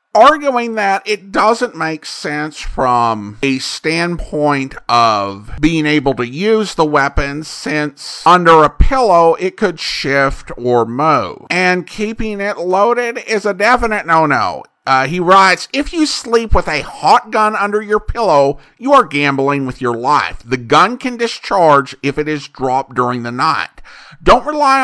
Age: 50-69